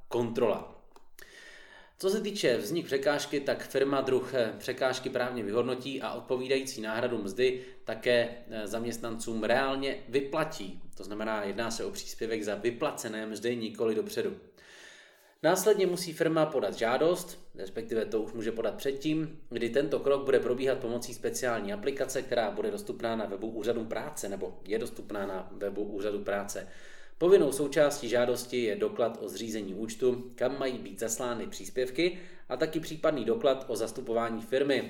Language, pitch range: Czech, 115-140 Hz